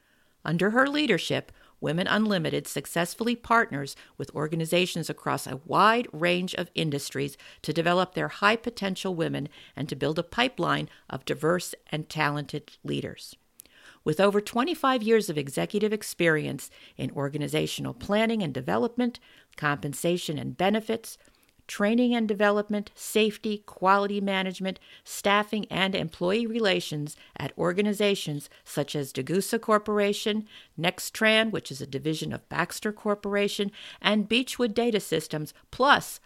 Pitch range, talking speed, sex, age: 155-215 Hz, 120 wpm, female, 50-69